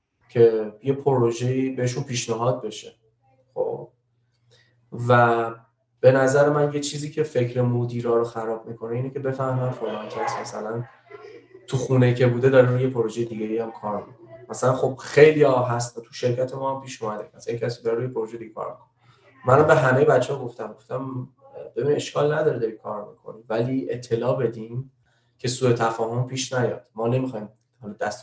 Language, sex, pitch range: Persian, male, 115-130 Hz